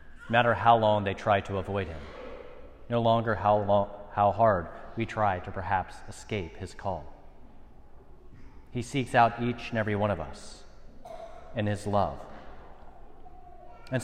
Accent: American